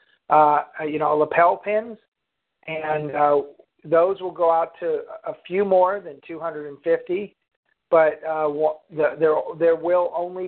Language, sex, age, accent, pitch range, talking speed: English, male, 50-69, American, 150-175 Hz, 130 wpm